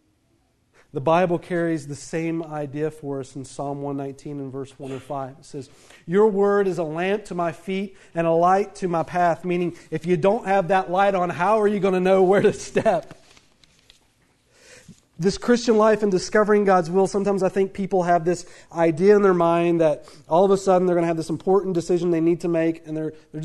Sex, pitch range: male, 135-200 Hz